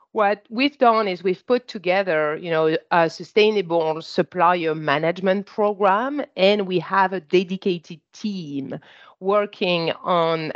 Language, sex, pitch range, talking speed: English, female, 170-215 Hz, 125 wpm